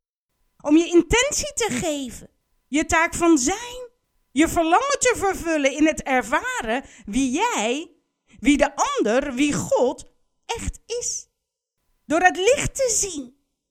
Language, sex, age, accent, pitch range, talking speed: Dutch, female, 50-69, Dutch, 275-405 Hz, 130 wpm